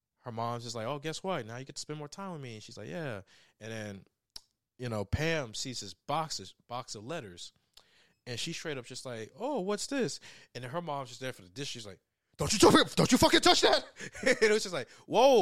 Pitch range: 105-160 Hz